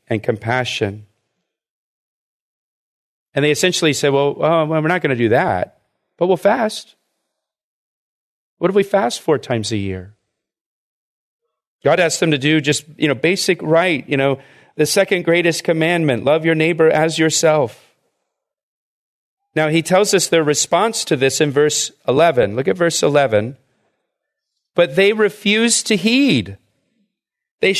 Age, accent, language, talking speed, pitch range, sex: 40-59, American, English, 145 wpm, 145-190 Hz, male